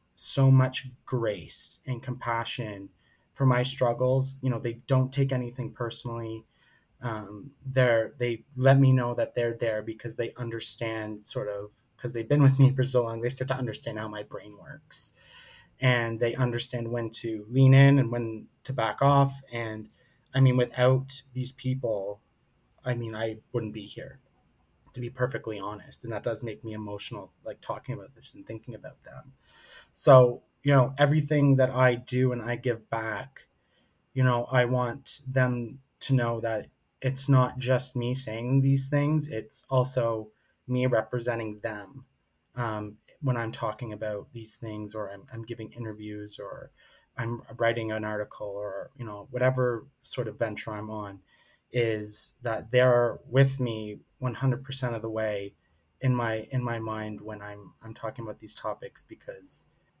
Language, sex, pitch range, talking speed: English, male, 110-130 Hz, 170 wpm